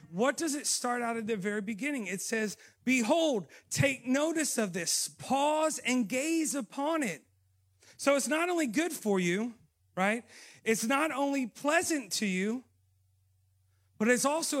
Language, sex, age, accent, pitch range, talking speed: English, male, 40-59, American, 155-230 Hz, 155 wpm